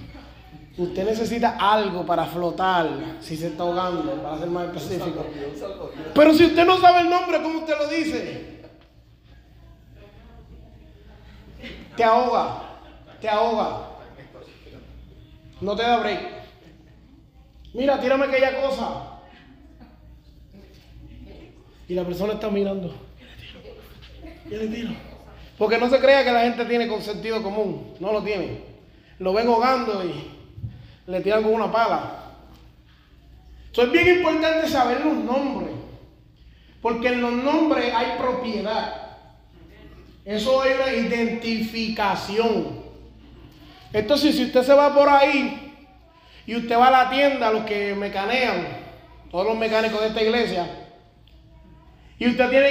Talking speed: 120 wpm